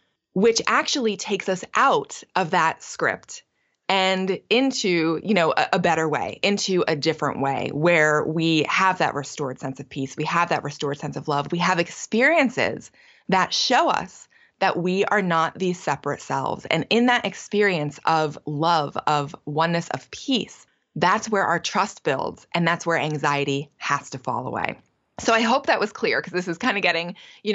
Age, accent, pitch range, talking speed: 20-39, American, 155-200 Hz, 185 wpm